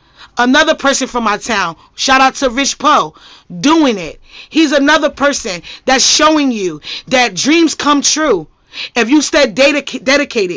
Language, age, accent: English, 30-49, American